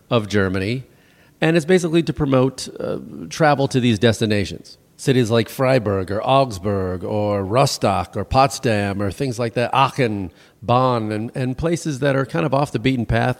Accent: American